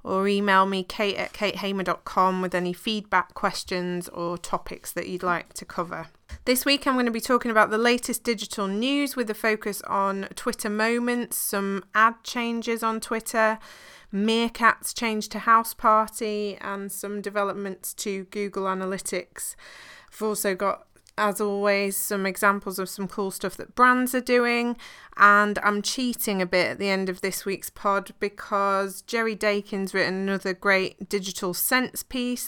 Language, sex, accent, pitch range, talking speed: English, female, British, 190-230 Hz, 160 wpm